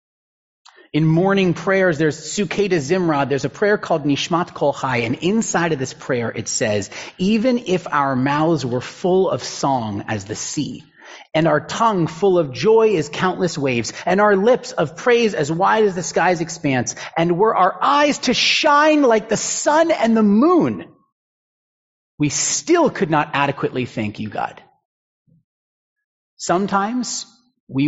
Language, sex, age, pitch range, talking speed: English, male, 30-49, 130-200 Hz, 155 wpm